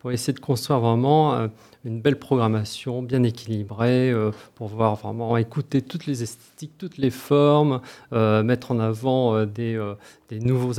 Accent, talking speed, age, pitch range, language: French, 145 wpm, 40-59, 115-145 Hz, French